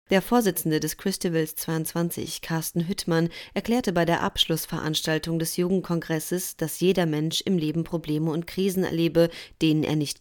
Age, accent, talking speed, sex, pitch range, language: 30-49, German, 145 wpm, female, 160-190 Hz, German